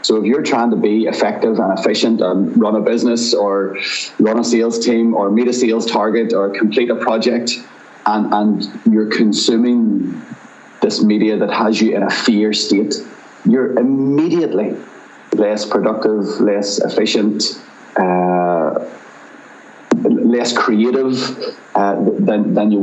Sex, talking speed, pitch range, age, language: male, 140 wpm, 105-120 Hz, 30-49, English